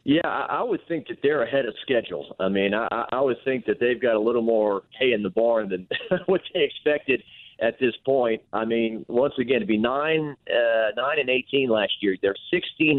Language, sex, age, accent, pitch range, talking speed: English, male, 50-69, American, 110-135 Hz, 215 wpm